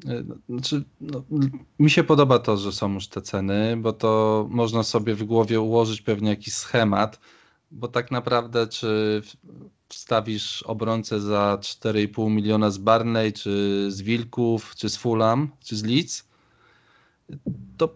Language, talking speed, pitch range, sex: Polish, 140 wpm, 100-120 Hz, male